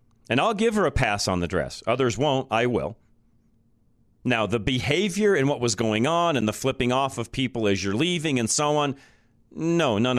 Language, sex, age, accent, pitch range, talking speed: English, male, 40-59, American, 100-125 Hz, 205 wpm